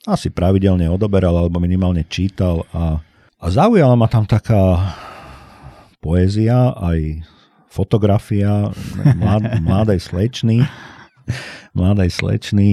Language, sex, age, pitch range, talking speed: Slovak, male, 50-69, 90-115 Hz, 80 wpm